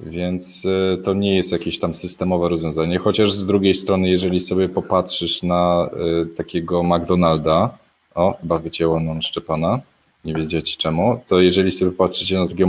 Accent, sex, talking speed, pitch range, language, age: native, male, 145 wpm, 80-95 Hz, Polish, 20-39